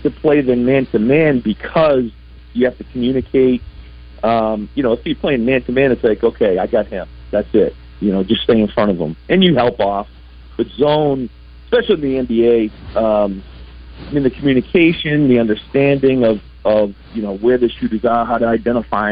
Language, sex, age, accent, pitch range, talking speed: English, male, 40-59, American, 85-125 Hz, 190 wpm